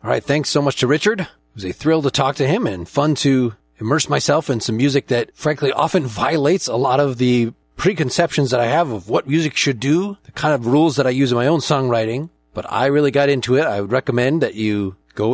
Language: English